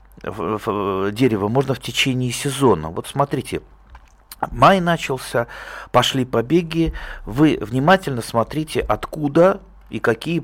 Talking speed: 100 wpm